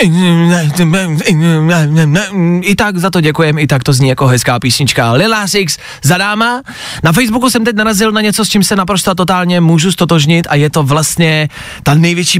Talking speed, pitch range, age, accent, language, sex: 175 wpm, 150-195 Hz, 20-39, native, Czech, male